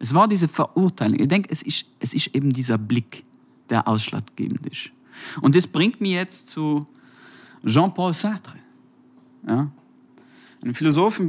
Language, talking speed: German, 145 wpm